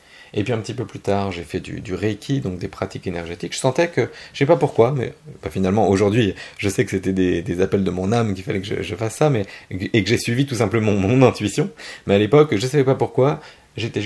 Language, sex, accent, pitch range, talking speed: French, male, French, 95-130 Hz, 270 wpm